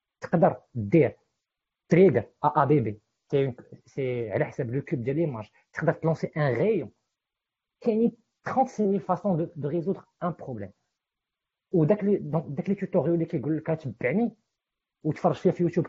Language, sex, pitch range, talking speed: Arabic, male, 135-175 Hz, 70 wpm